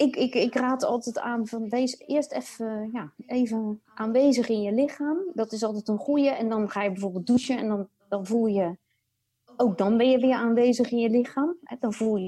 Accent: Dutch